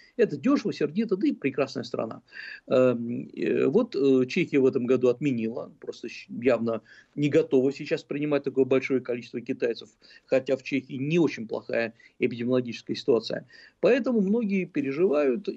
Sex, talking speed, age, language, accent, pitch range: male, 130 wpm, 50-69, Russian, native, 130-190 Hz